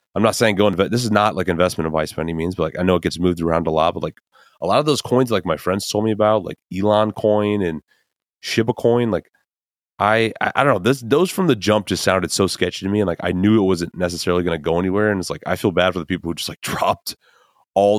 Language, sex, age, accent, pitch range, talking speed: English, male, 30-49, American, 90-110 Hz, 280 wpm